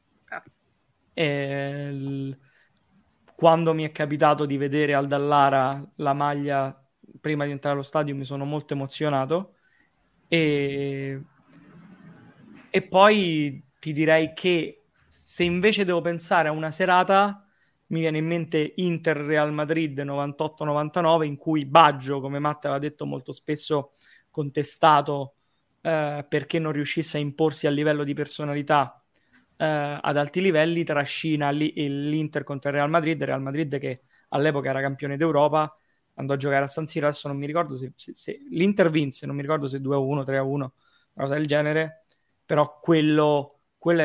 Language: Italian